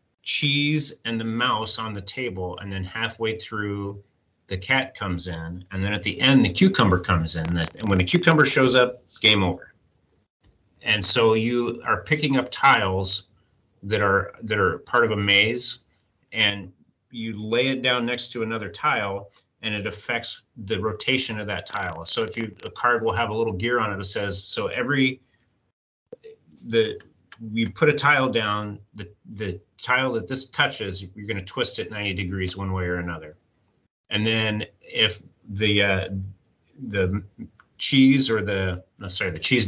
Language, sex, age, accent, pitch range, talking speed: English, male, 30-49, American, 100-120 Hz, 175 wpm